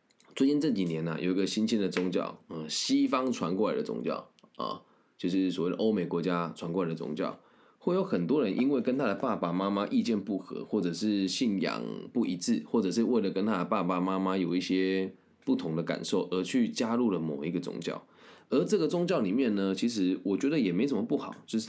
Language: Chinese